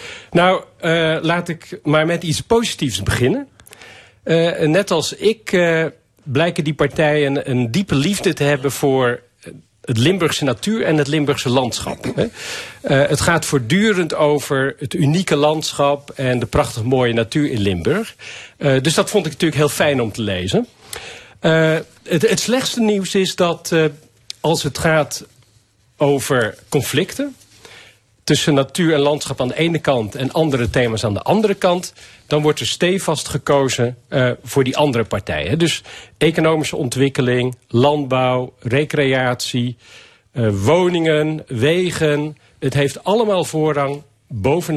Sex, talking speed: male, 145 wpm